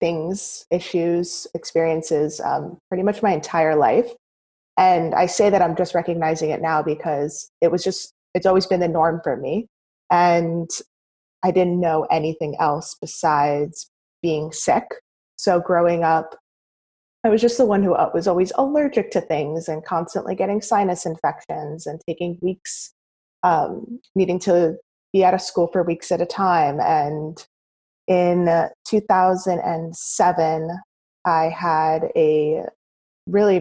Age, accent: 20-39, American